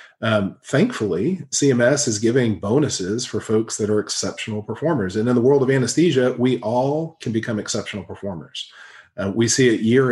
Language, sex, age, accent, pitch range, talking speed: English, male, 40-59, American, 100-125 Hz, 170 wpm